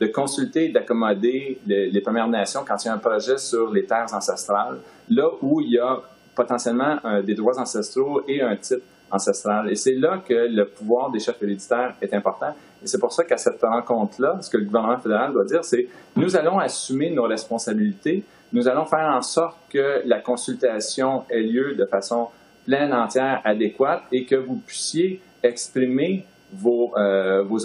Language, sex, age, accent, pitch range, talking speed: French, male, 40-59, Canadian, 105-160 Hz, 185 wpm